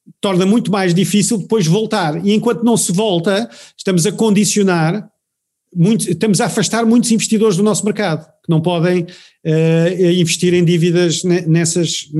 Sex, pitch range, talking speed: male, 165-210 Hz, 145 wpm